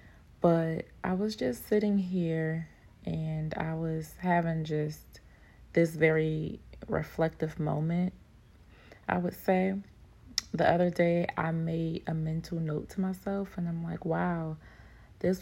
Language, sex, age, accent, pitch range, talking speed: English, female, 30-49, American, 150-175 Hz, 130 wpm